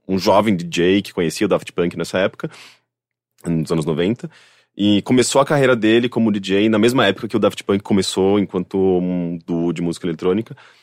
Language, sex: Portuguese, male